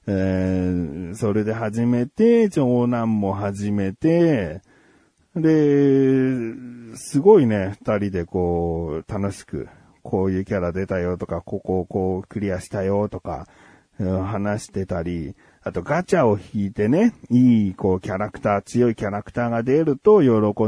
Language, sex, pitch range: Japanese, male, 95-160 Hz